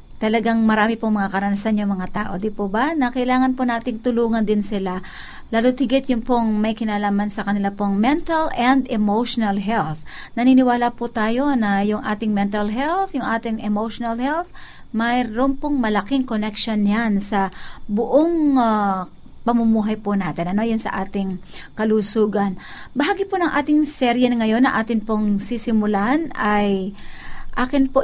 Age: 50-69